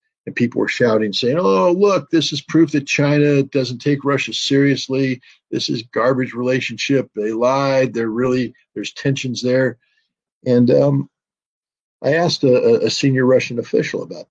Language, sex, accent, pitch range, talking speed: English, male, American, 110-135 Hz, 155 wpm